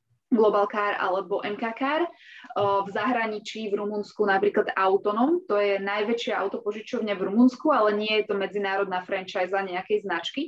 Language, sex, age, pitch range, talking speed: Slovak, female, 20-39, 195-230 Hz, 155 wpm